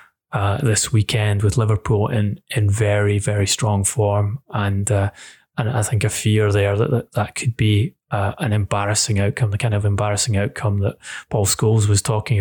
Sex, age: male, 20-39